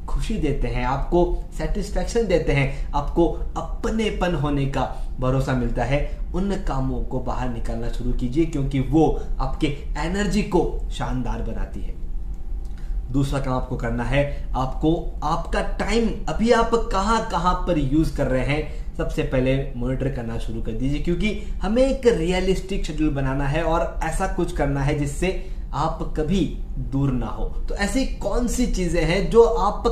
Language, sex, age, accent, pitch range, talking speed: Hindi, male, 20-39, native, 130-195 Hz, 155 wpm